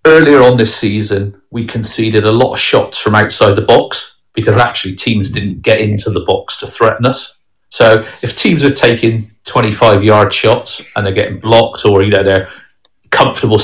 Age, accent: 40-59, British